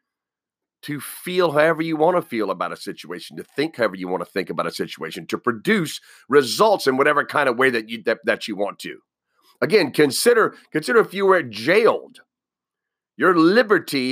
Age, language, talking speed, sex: 40-59, English, 185 wpm, male